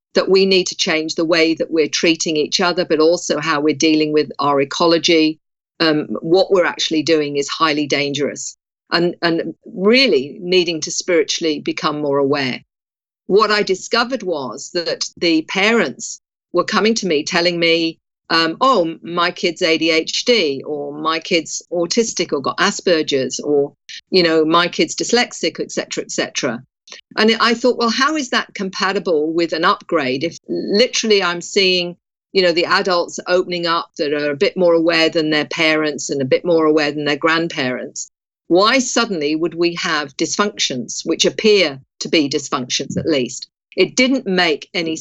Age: 50-69